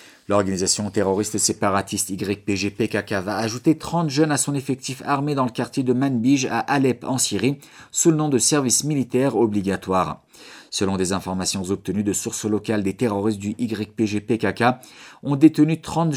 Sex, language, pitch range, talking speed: male, French, 105-135 Hz, 155 wpm